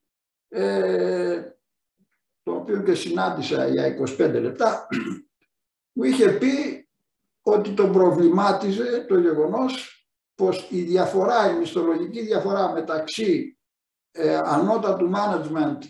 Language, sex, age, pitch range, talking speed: Greek, male, 60-79, 175-240 Hz, 100 wpm